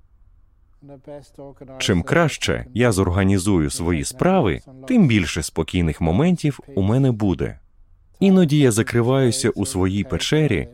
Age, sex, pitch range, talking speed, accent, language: 30-49, male, 90-135 Hz, 105 wpm, native, Ukrainian